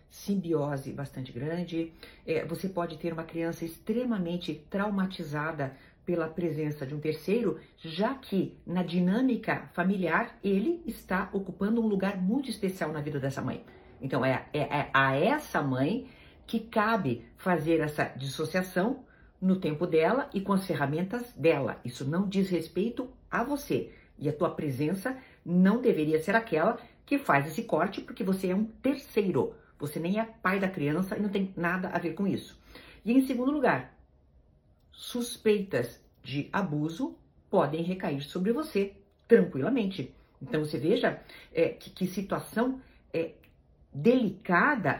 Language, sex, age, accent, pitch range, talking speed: Portuguese, female, 50-69, Brazilian, 150-220 Hz, 145 wpm